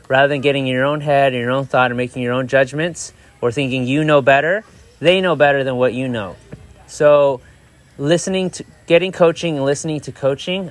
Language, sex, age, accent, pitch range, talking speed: English, male, 30-49, American, 130-150 Hz, 205 wpm